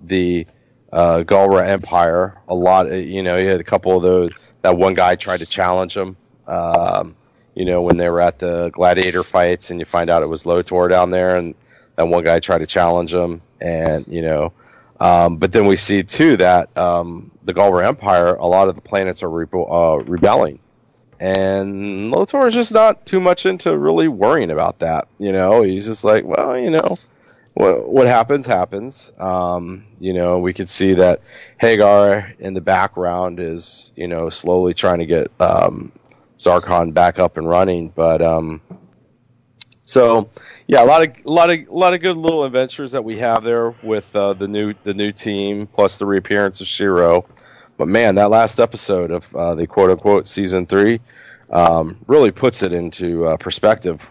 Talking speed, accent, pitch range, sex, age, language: 185 wpm, American, 85-105 Hz, male, 30-49, English